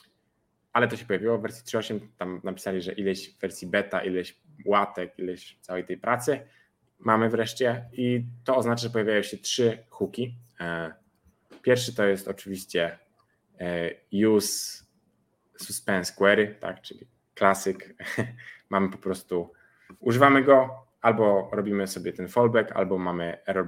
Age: 20-39